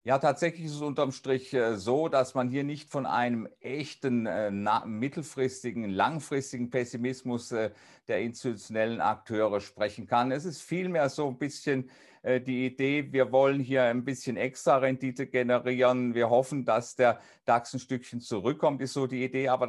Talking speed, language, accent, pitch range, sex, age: 150 wpm, German, German, 115-135 Hz, male, 50-69